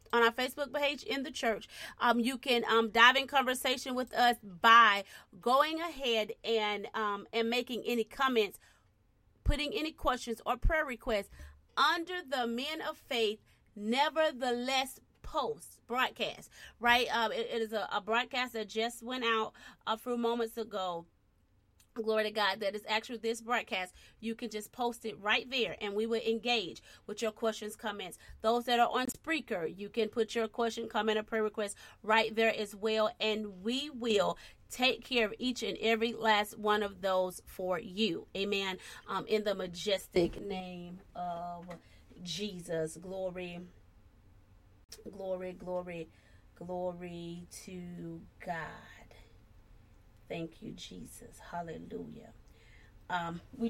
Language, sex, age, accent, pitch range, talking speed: English, female, 30-49, American, 180-235 Hz, 145 wpm